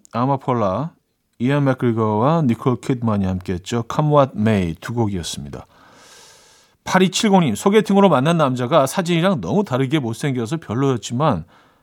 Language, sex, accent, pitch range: Korean, male, native, 115-155 Hz